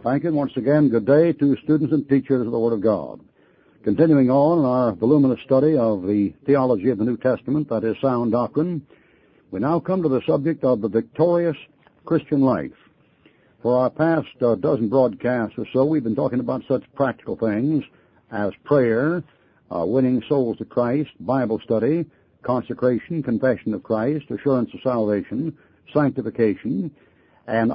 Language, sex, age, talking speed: English, male, 60-79, 165 wpm